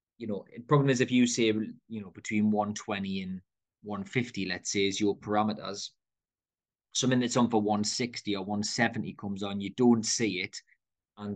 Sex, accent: male, British